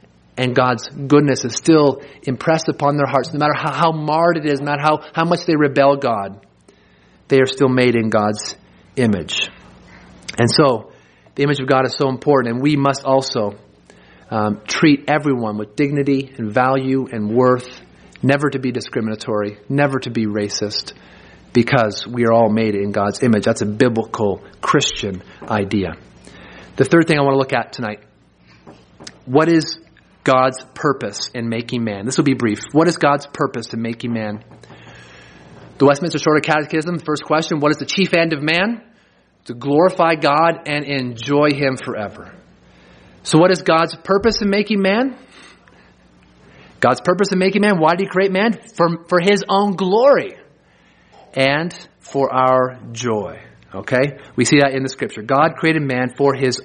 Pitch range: 115-155 Hz